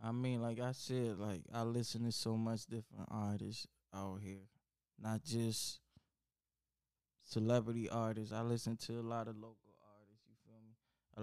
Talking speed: 165 wpm